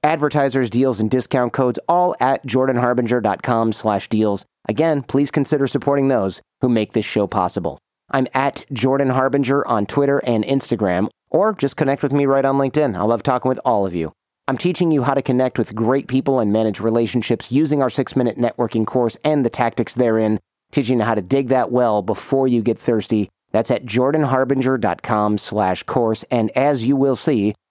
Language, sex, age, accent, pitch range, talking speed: English, male, 30-49, American, 110-135 Hz, 180 wpm